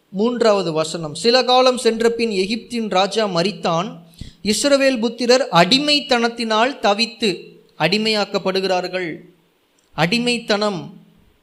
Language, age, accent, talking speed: Tamil, 20-39, native, 75 wpm